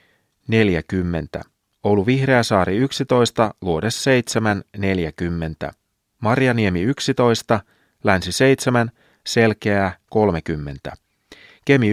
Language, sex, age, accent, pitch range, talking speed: Finnish, male, 30-49, native, 100-130 Hz, 65 wpm